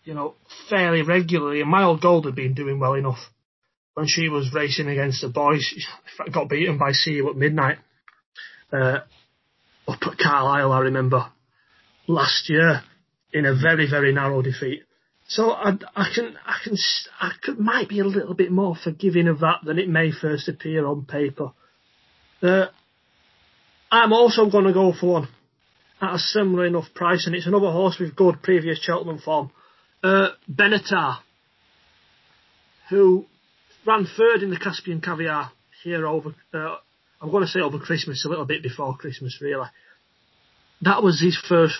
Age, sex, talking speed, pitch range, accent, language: 30-49, male, 165 wpm, 145-185 Hz, British, English